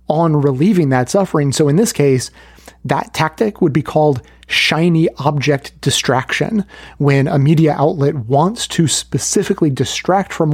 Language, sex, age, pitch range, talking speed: English, male, 30-49, 135-170 Hz, 140 wpm